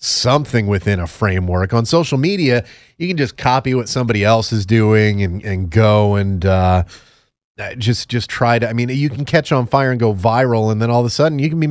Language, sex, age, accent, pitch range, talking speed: English, male, 30-49, American, 100-135 Hz, 225 wpm